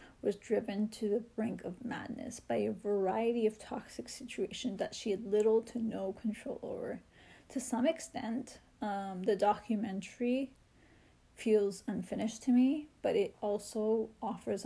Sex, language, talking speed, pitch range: female, English, 145 wpm, 210-240 Hz